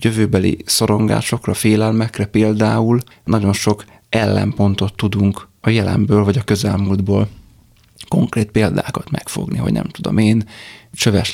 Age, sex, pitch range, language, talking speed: 30-49, male, 100-115 Hz, Hungarian, 110 wpm